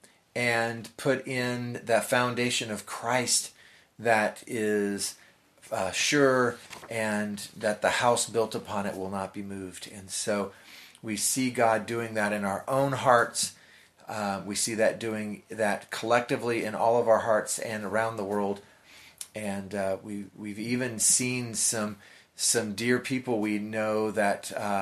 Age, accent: 30-49, American